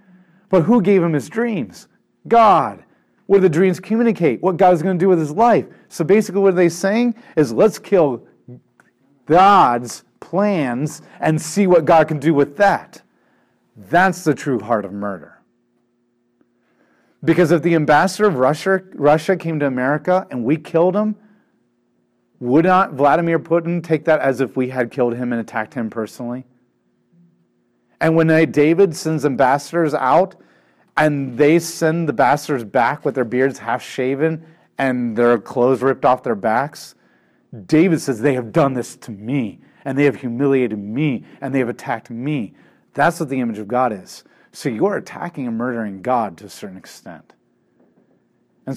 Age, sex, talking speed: 40-59, male, 165 wpm